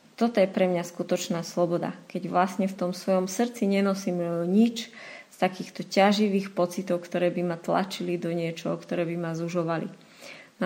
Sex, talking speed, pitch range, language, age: female, 165 wpm, 185-215 Hz, Slovak, 20-39